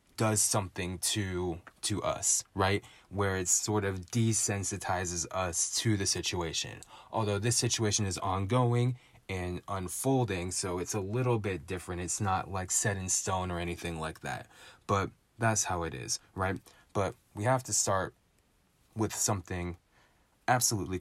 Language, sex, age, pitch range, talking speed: English, male, 20-39, 90-115 Hz, 150 wpm